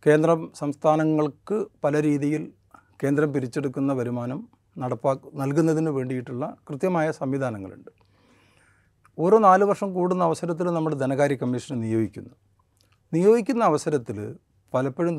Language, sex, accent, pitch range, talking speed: Malayalam, male, native, 120-155 Hz, 95 wpm